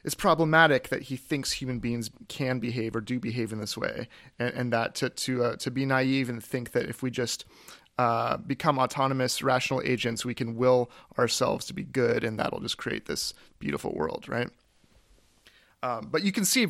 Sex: male